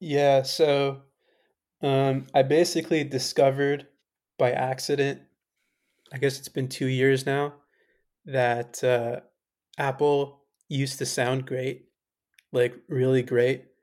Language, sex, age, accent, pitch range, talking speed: English, male, 20-39, American, 120-135 Hz, 110 wpm